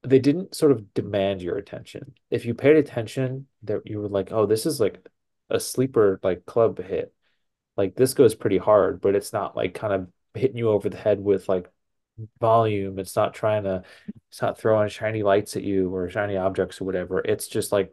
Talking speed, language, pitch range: 210 wpm, English, 95-120 Hz